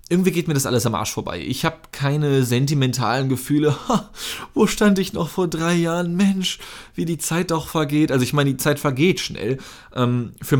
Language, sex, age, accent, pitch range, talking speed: German, male, 20-39, German, 130-165 Hz, 190 wpm